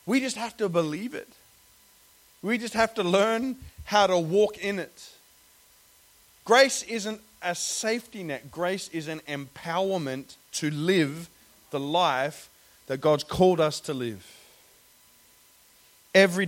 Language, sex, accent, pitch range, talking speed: Danish, male, Australian, 135-200 Hz, 130 wpm